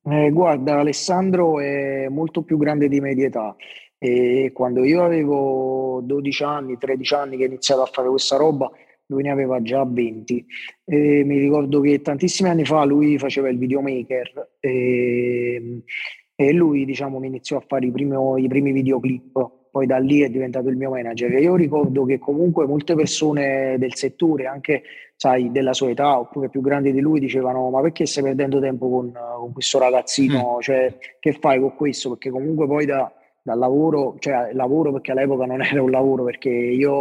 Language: Italian